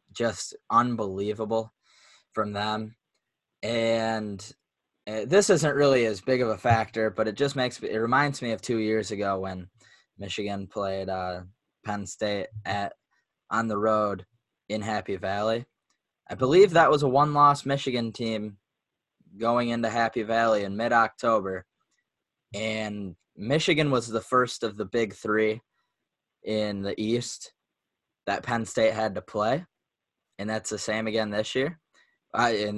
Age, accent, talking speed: 10-29, American, 145 wpm